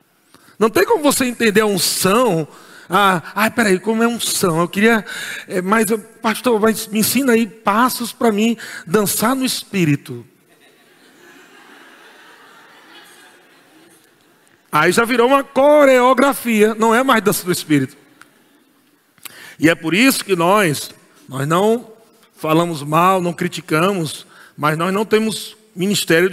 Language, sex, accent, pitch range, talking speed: Portuguese, male, Brazilian, 175-230 Hz, 135 wpm